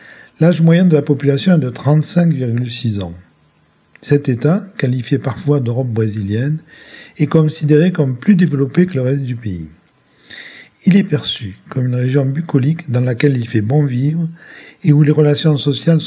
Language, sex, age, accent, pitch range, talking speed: French, male, 50-69, French, 115-150 Hz, 160 wpm